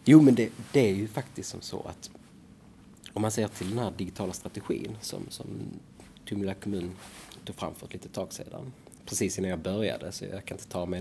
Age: 30-49